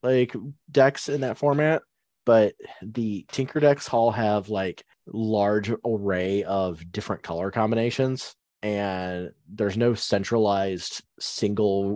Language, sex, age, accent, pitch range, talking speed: English, male, 20-39, American, 95-125 Hz, 115 wpm